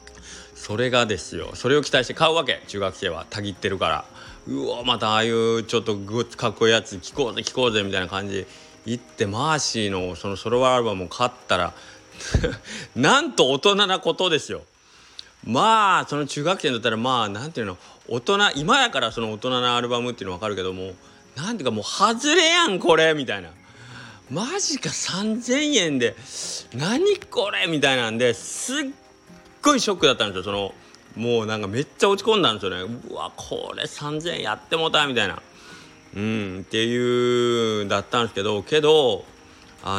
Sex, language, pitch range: male, Japanese, 100-170 Hz